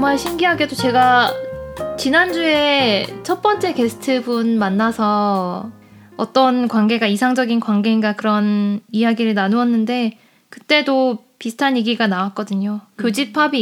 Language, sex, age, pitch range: Korean, female, 20-39, 215-285 Hz